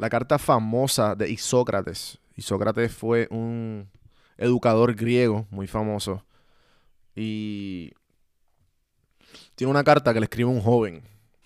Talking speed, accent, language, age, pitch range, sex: 110 wpm, Venezuelan, Spanish, 20-39, 105-130 Hz, male